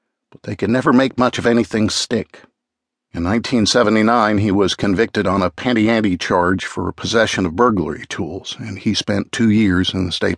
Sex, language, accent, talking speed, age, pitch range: male, English, American, 185 wpm, 50-69, 95-115 Hz